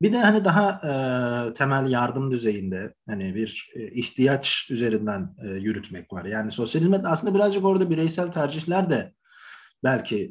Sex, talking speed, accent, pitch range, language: male, 145 wpm, native, 115-150 Hz, Turkish